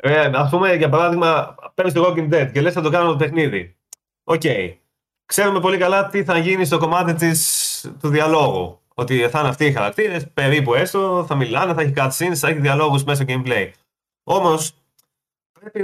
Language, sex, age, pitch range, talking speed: Greek, male, 20-39, 130-170 Hz, 190 wpm